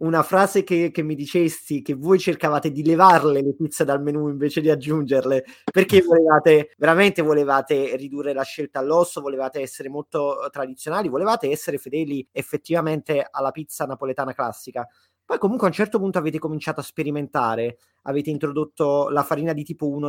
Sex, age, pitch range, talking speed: male, 30-49, 140-175 Hz, 165 wpm